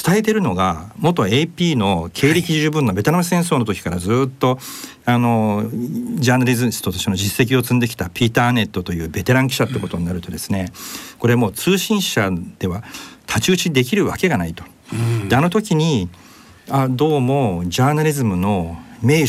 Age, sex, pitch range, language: 50-69, male, 95-150 Hz, Japanese